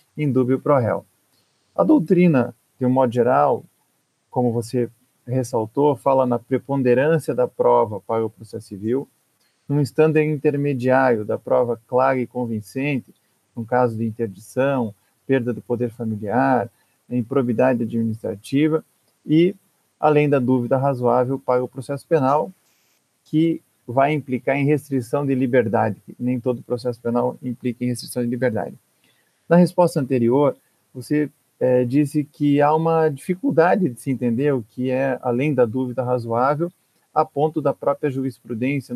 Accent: Brazilian